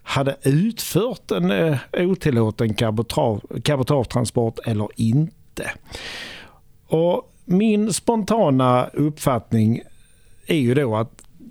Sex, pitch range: male, 115-155 Hz